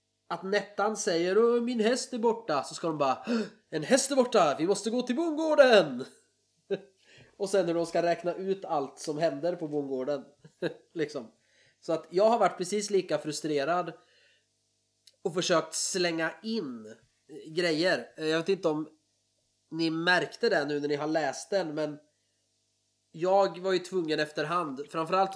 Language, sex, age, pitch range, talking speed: Swedish, male, 20-39, 140-175 Hz, 155 wpm